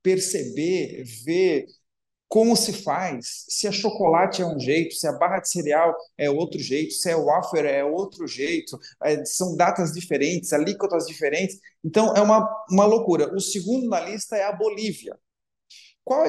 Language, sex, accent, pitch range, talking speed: Portuguese, male, Brazilian, 175-235 Hz, 160 wpm